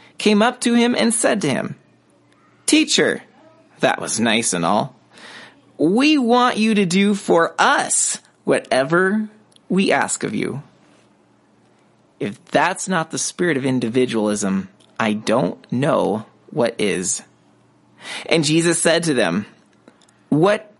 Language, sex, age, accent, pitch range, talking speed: English, male, 30-49, American, 150-215 Hz, 125 wpm